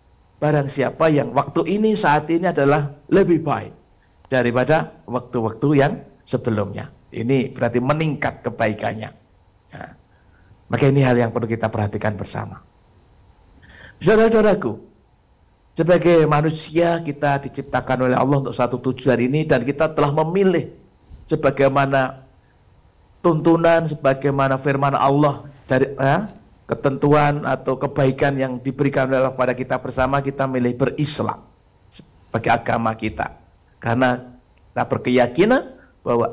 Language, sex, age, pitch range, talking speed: Indonesian, male, 50-69, 120-150 Hz, 115 wpm